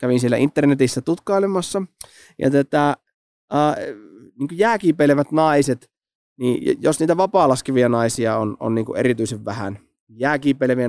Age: 20-39